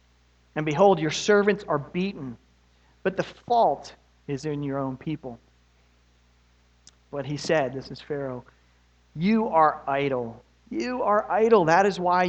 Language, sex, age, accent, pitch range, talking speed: English, male, 40-59, American, 120-175 Hz, 140 wpm